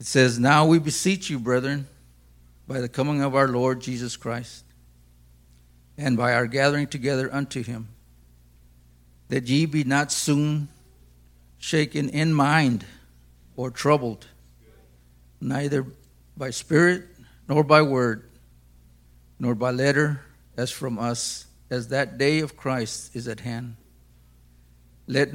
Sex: male